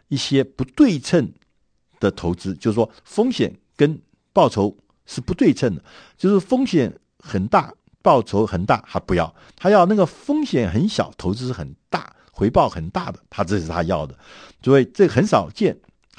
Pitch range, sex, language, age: 90-130 Hz, male, Chinese, 60-79